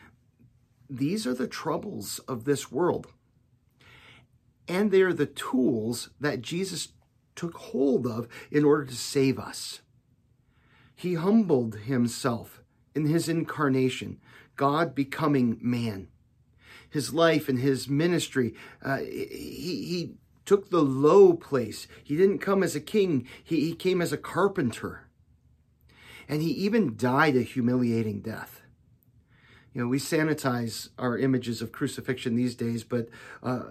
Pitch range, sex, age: 120-150 Hz, male, 40-59